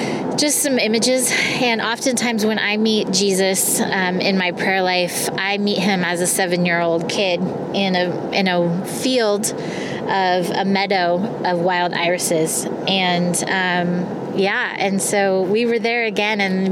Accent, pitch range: American, 180-210 Hz